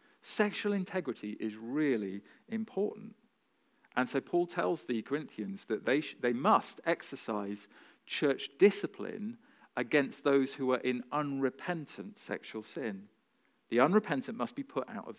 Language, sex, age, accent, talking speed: English, male, 40-59, British, 135 wpm